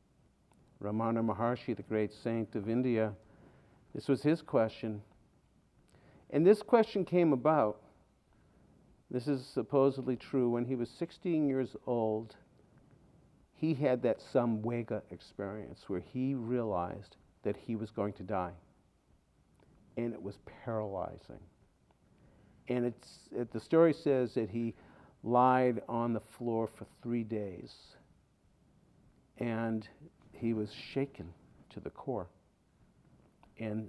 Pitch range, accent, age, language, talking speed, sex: 105-130 Hz, American, 50-69, English, 120 wpm, male